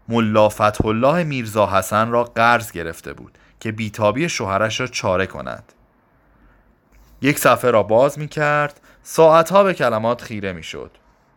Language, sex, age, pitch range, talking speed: Persian, male, 30-49, 95-130 Hz, 135 wpm